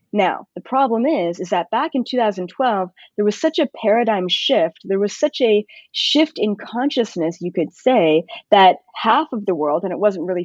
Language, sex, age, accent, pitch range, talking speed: English, female, 20-39, American, 180-230 Hz, 195 wpm